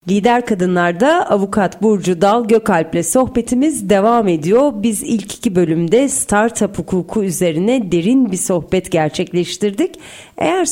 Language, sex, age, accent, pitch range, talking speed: Turkish, female, 40-59, native, 180-235 Hz, 120 wpm